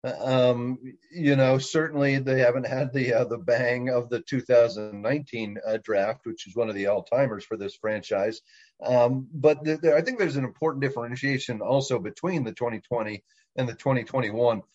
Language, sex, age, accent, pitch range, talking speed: English, male, 40-59, American, 125-160 Hz, 165 wpm